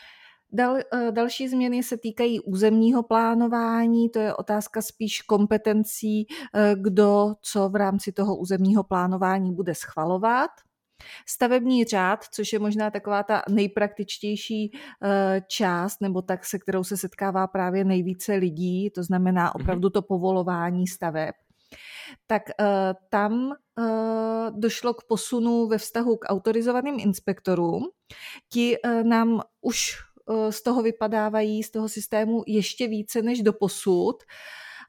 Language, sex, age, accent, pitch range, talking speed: Czech, female, 30-49, native, 190-220 Hz, 115 wpm